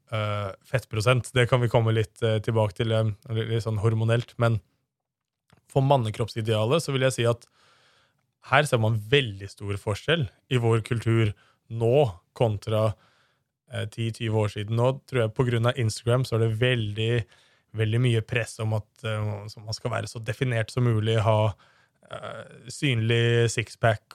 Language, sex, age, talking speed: Swedish, male, 20-39, 160 wpm